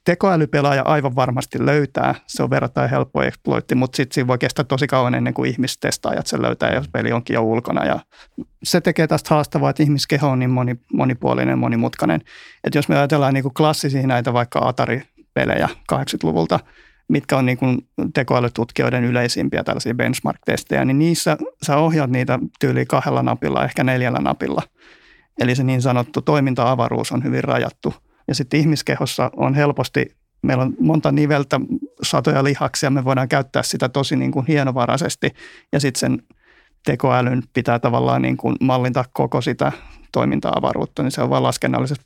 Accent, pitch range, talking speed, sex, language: native, 125-150 Hz, 150 wpm, male, Finnish